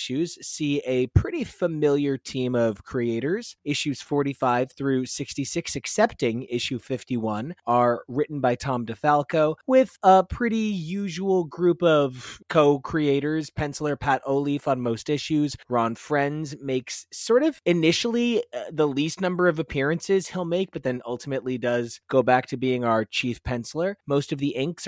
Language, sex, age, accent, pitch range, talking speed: English, male, 20-39, American, 125-175 Hz, 145 wpm